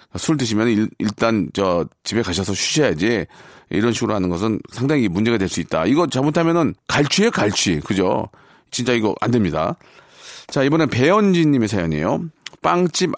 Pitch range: 135-185 Hz